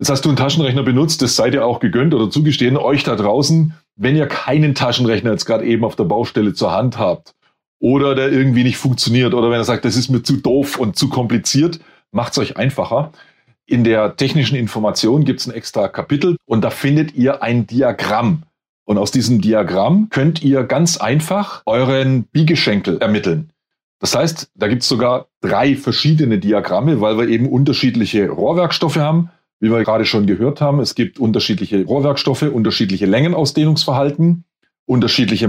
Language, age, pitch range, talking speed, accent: German, 30-49, 115-150 Hz, 175 wpm, German